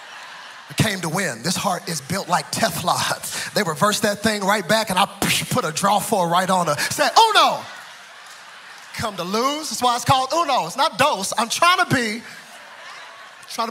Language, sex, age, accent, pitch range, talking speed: English, male, 30-49, American, 195-260 Hz, 195 wpm